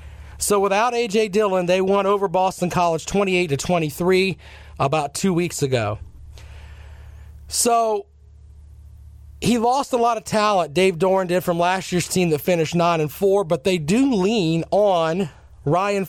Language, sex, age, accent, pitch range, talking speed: English, male, 40-59, American, 140-195 Hz, 145 wpm